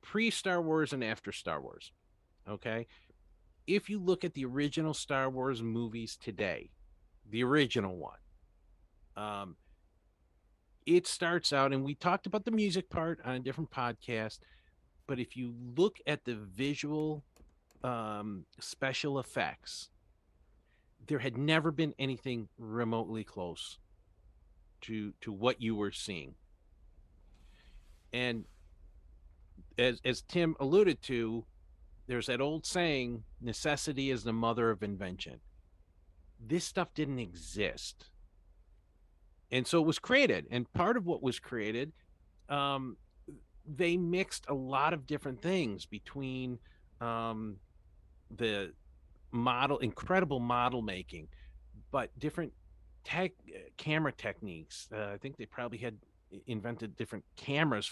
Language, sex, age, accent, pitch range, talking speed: English, male, 50-69, American, 85-140 Hz, 120 wpm